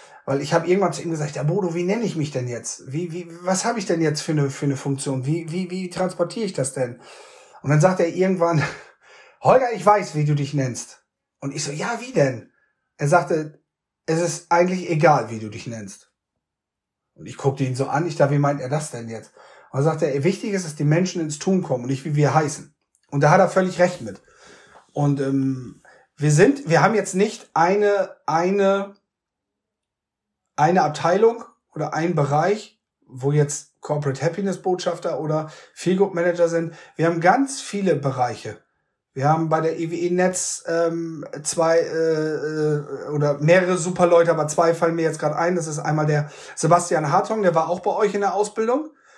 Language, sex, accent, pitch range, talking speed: German, male, German, 145-180 Hz, 200 wpm